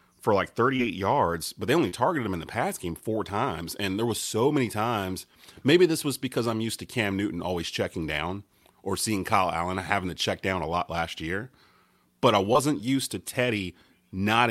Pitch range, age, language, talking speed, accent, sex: 90-115 Hz, 30-49, English, 215 wpm, American, male